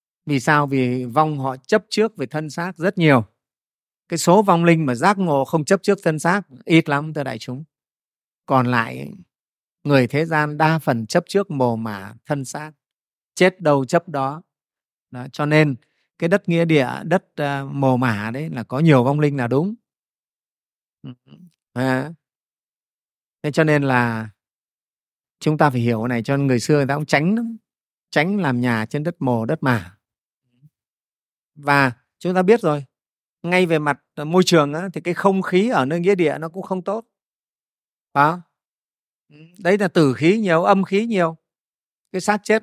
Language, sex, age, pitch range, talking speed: Vietnamese, male, 30-49, 135-185 Hz, 175 wpm